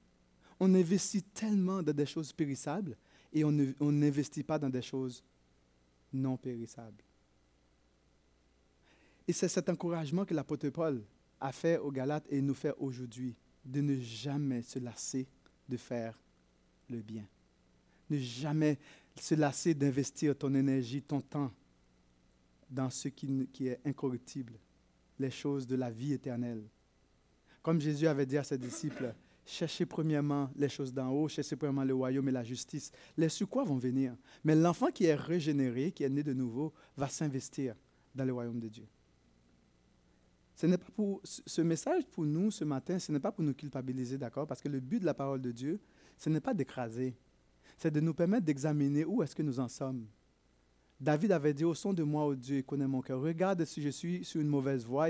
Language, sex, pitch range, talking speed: French, male, 125-155 Hz, 180 wpm